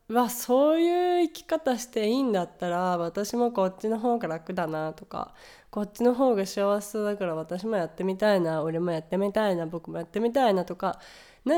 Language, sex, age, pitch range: Japanese, female, 20-39, 195-245 Hz